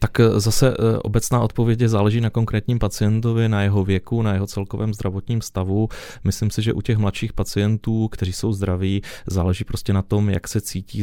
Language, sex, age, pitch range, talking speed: Czech, male, 30-49, 95-105 Hz, 180 wpm